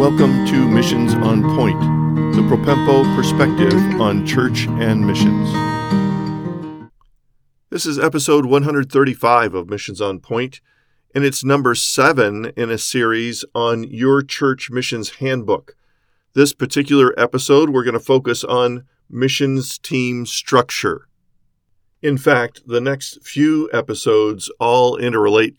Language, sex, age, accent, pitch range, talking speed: English, male, 50-69, American, 110-140 Hz, 120 wpm